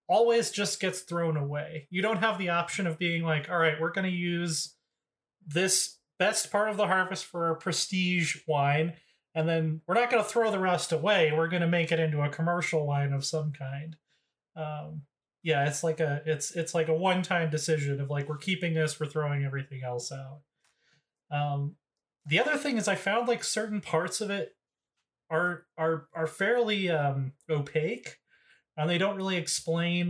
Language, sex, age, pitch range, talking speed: English, male, 30-49, 155-185 Hz, 190 wpm